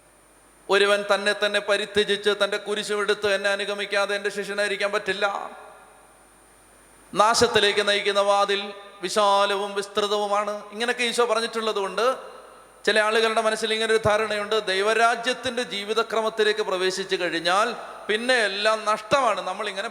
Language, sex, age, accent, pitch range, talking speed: Malayalam, male, 30-49, native, 205-240 Hz, 110 wpm